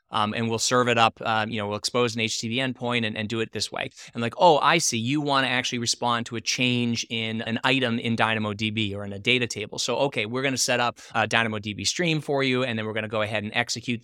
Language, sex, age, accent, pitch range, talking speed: English, male, 20-39, American, 115-140 Hz, 275 wpm